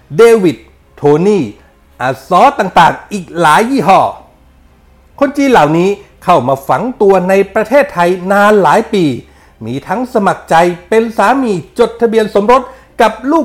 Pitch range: 165-235 Hz